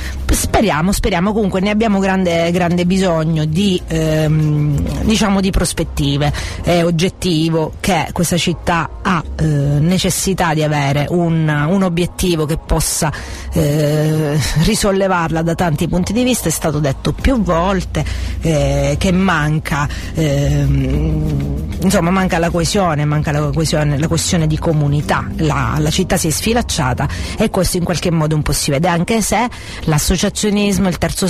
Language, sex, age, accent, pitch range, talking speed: Italian, female, 40-59, native, 150-190 Hz, 140 wpm